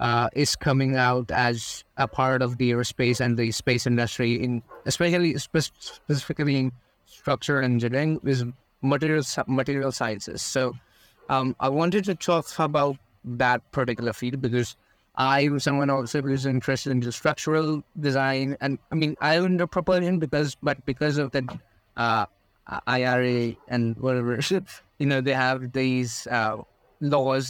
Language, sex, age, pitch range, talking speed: English, male, 20-39, 120-140 Hz, 150 wpm